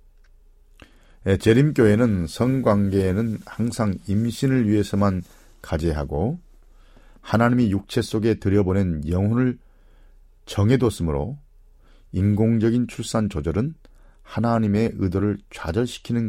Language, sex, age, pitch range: Korean, male, 40-59, 85-115 Hz